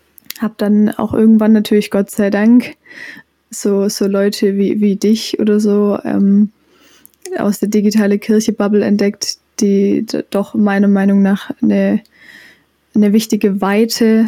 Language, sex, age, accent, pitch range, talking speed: German, female, 20-39, German, 200-220 Hz, 130 wpm